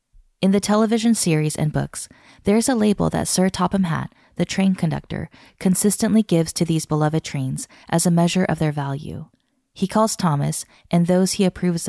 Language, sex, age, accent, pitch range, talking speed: English, female, 20-39, American, 155-195 Hz, 175 wpm